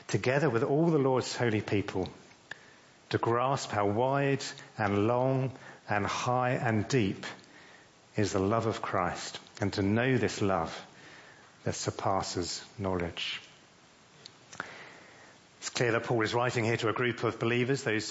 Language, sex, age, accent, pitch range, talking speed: English, male, 40-59, British, 110-140 Hz, 145 wpm